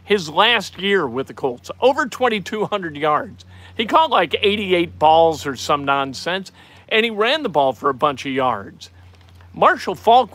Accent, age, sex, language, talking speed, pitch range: American, 50-69, male, English, 170 wpm, 140-210 Hz